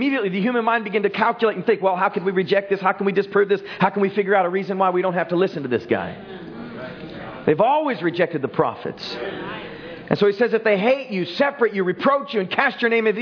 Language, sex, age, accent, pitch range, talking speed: English, male, 40-59, American, 170-220 Hz, 265 wpm